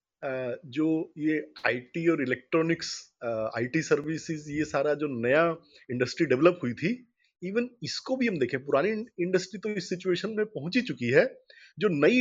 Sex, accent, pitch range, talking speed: male, native, 150-205 Hz, 155 wpm